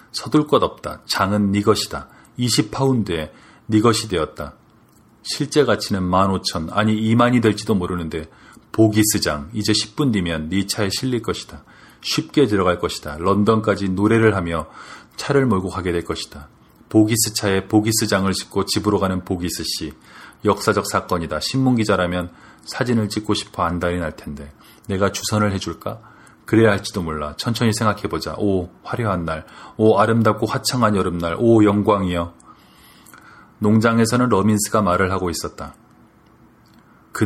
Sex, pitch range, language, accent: male, 90-115 Hz, Korean, native